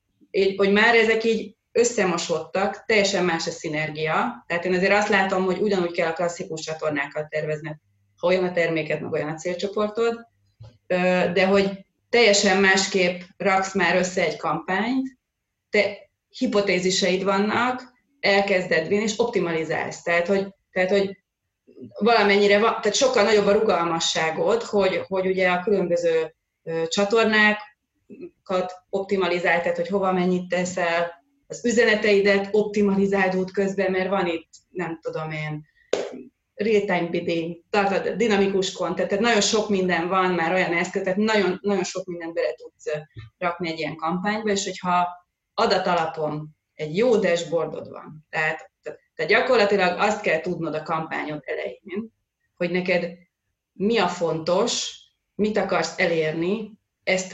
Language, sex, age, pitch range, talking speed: Hungarian, female, 30-49, 170-205 Hz, 130 wpm